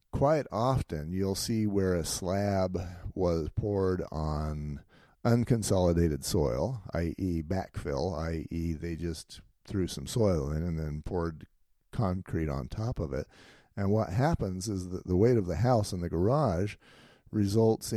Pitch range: 85-110 Hz